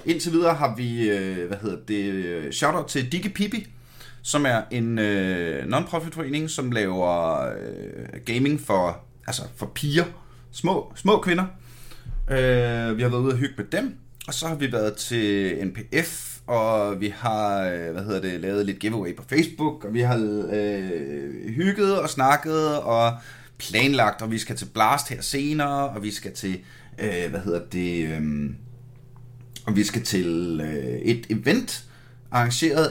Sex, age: male, 30-49